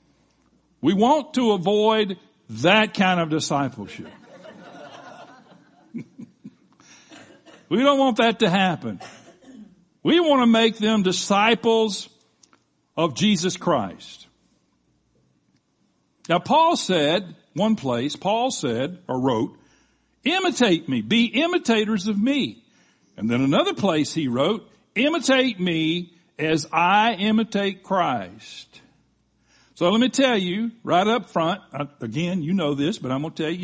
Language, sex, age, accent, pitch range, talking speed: English, male, 60-79, American, 165-230 Hz, 120 wpm